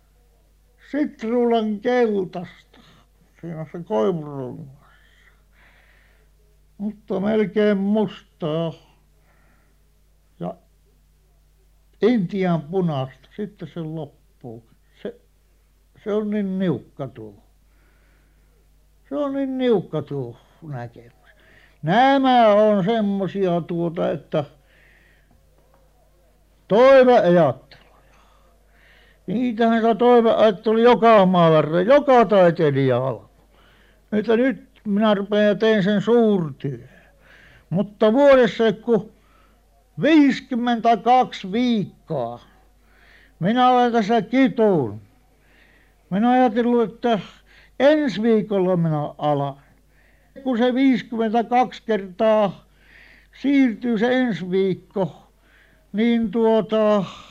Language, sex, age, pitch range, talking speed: Finnish, male, 60-79, 140-230 Hz, 80 wpm